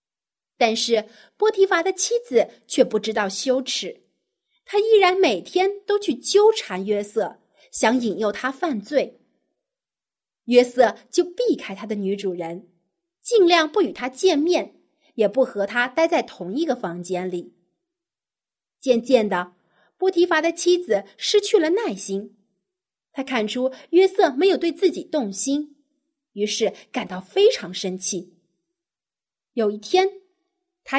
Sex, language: female, Chinese